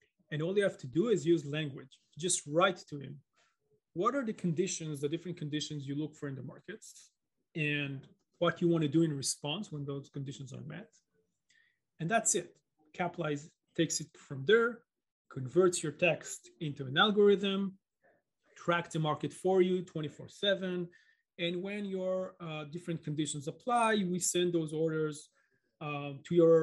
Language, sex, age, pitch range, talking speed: English, male, 30-49, 145-185 Hz, 165 wpm